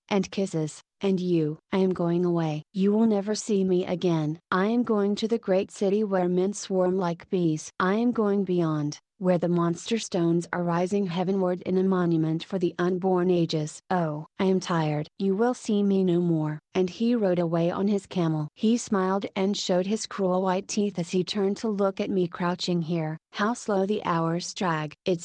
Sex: female